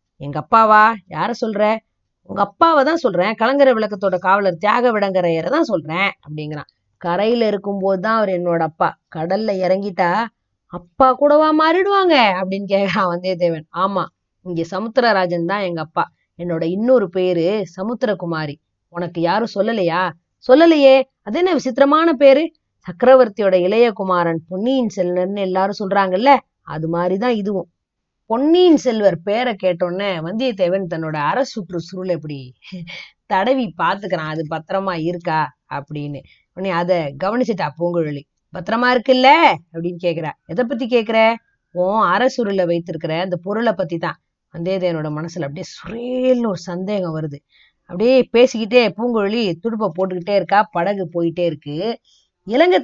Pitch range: 175-235 Hz